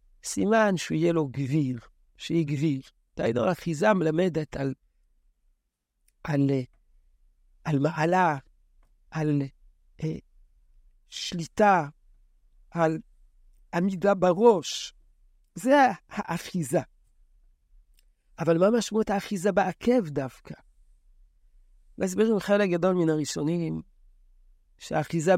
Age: 60-79